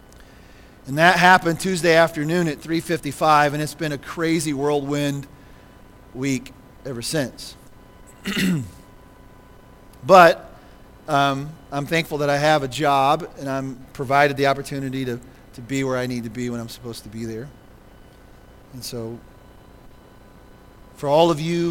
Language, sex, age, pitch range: English, male, 40-59, 135-185 Hz